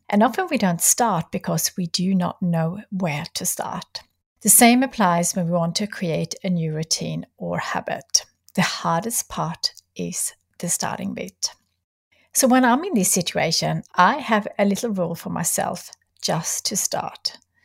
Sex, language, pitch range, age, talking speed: female, English, 175-225 Hz, 60-79, 165 wpm